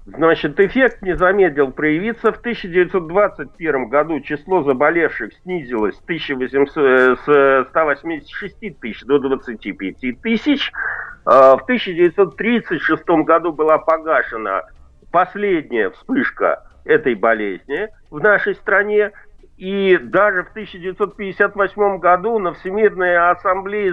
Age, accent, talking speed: 50-69, native, 95 wpm